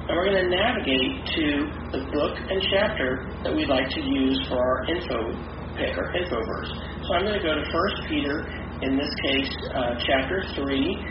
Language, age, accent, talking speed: English, 40-59, American, 195 wpm